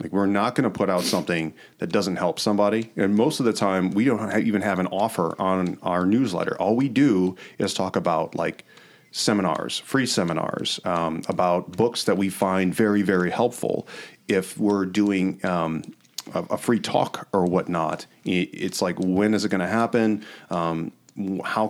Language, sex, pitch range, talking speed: English, male, 95-110 Hz, 175 wpm